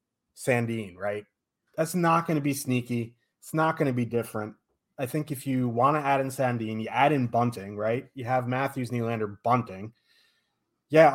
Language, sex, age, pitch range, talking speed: English, male, 30-49, 105-130 Hz, 185 wpm